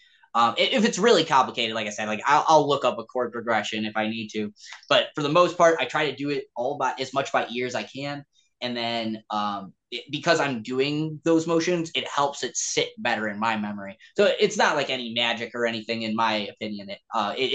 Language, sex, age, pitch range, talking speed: English, male, 20-39, 115-160 Hz, 230 wpm